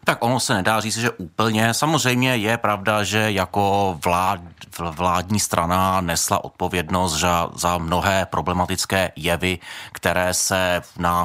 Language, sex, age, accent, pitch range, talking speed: Czech, male, 30-49, native, 85-95 Hz, 135 wpm